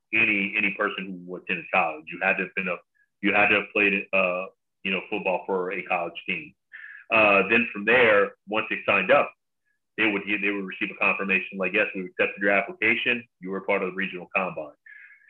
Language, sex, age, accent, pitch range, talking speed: English, male, 30-49, American, 95-115 Hz, 210 wpm